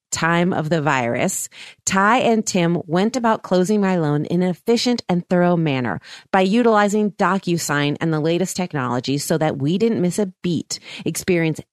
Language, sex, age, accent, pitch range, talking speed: English, female, 30-49, American, 155-210 Hz, 170 wpm